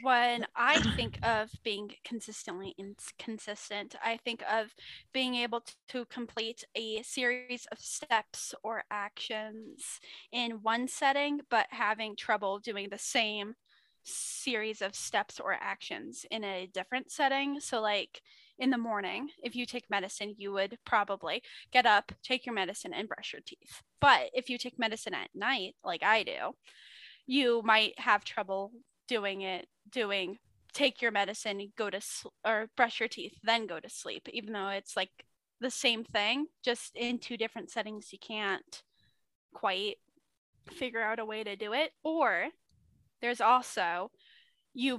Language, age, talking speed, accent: English, 10-29, 155 wpm, American